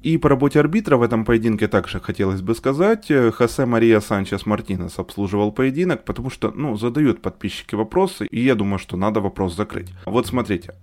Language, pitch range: Ukrainian, 100-140 Hz